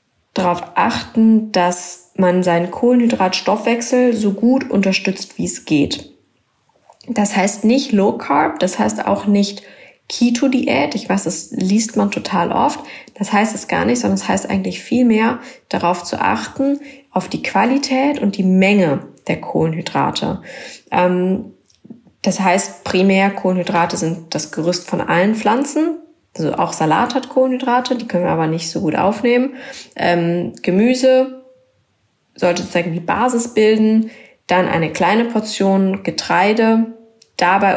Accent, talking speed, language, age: German, 140 wpm, German, 20-39